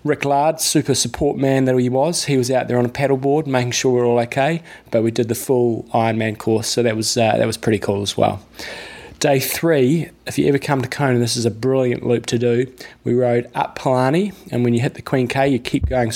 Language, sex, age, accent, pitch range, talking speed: English, male, 20-39, Australian, 115-130 Hz, 250 wpm